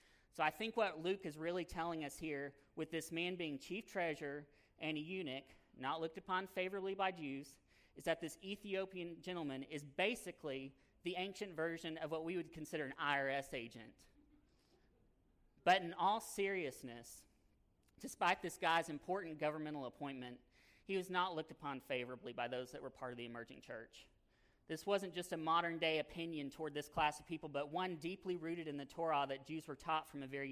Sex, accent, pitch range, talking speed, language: male, American, 140-175 Hz, 185 wpm, English